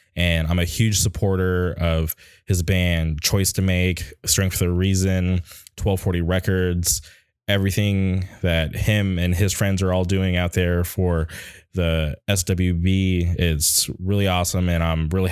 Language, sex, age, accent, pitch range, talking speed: English, male, 20-39, American, 85-95 Hz, 145 wpm